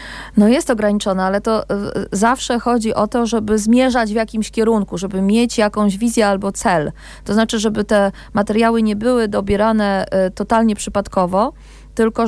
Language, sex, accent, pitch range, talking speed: Polish, female, native, 195-230 Hz, 150 wpm